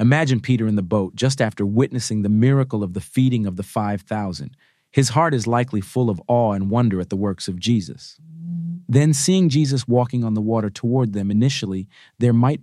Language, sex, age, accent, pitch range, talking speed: English, male, 40-59, American, 100-125 Hz, 200 wpm